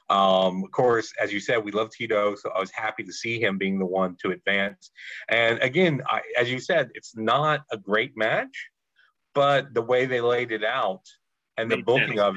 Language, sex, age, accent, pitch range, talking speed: English, male, 40-59, American, 110-160 Hz, 210 wpm